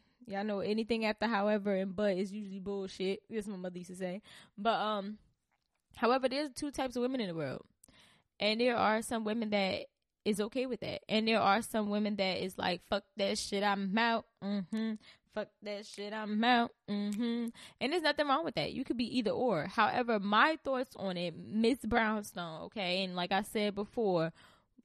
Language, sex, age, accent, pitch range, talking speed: English, female, 10-29, American, 190-235 Hz, 195 wpm